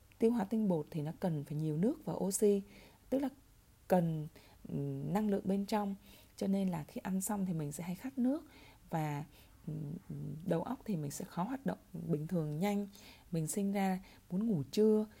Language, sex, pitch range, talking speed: Vietnamese, female, 160-210 Hz, 195 wpm